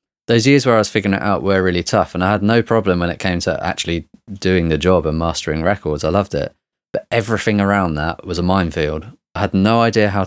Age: 30-49